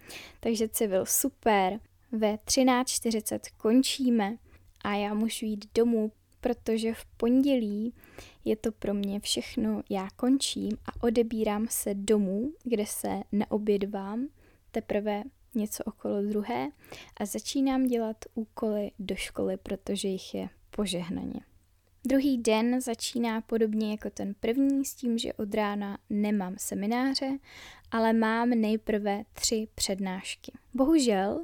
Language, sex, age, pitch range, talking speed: Czech, female, 10-29, 205-240 Hz, 120 wpm